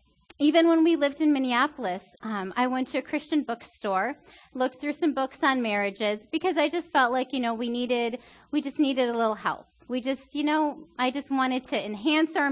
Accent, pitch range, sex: American, 220-300 Hz, female